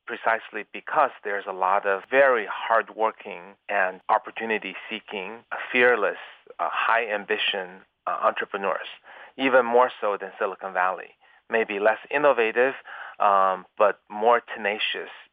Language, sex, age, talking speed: English, male, 30-49, 100 wpm